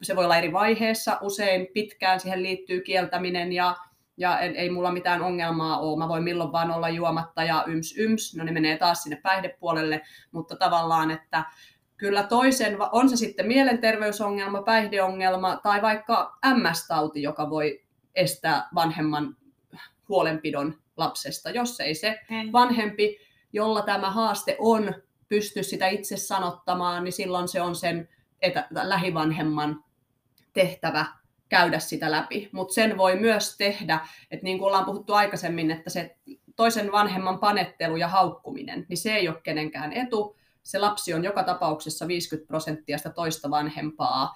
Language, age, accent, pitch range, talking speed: Finnish, 30-49, native, 160-205 Hz, 145 wpm